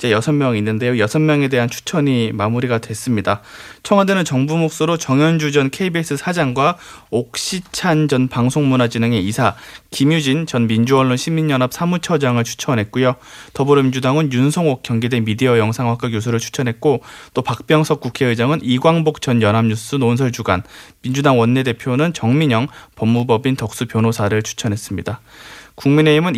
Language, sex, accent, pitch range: Korean, male, native, 115-150 Hz